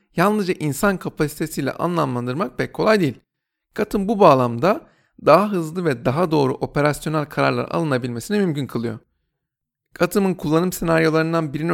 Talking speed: 125 wpm